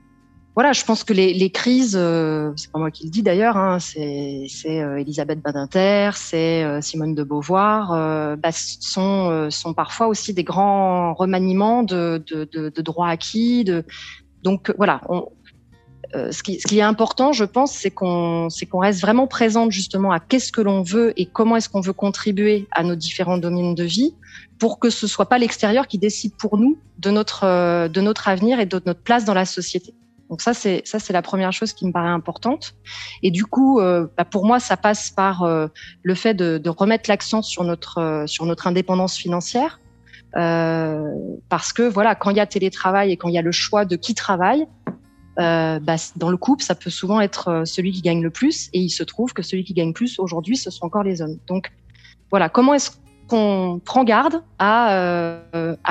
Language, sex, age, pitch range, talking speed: French, female, 30-49, 170-215 Hz, 210 wpm